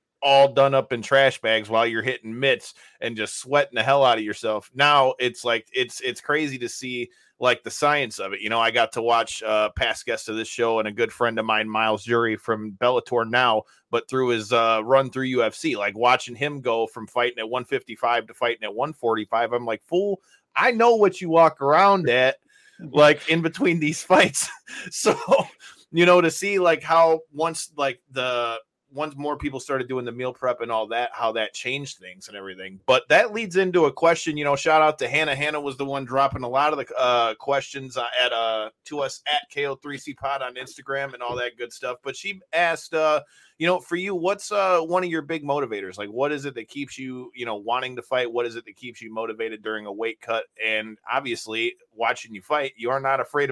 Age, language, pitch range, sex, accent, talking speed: 30-49, English, 115-155 Hz, male, American, 225 wpm